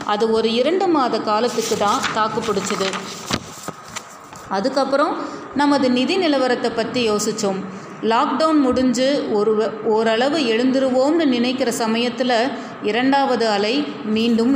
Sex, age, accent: female, 30-49, native